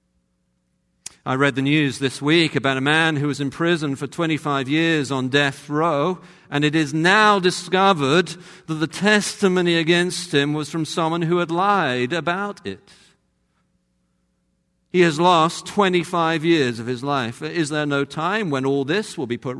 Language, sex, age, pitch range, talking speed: English, male, 50-69, 135-170 Hz, 170 wpm